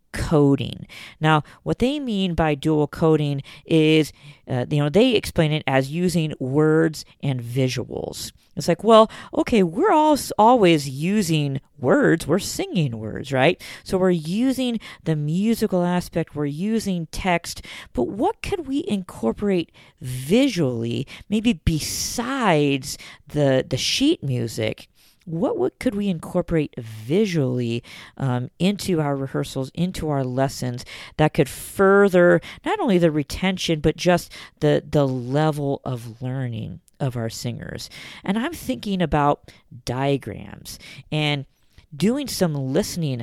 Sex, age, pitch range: female, 40-59, 130-190 Hz